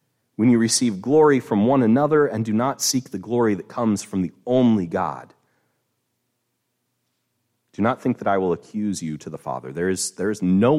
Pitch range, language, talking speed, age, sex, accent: 80-120 Hz, English, 195 wpm, 30-49, male, American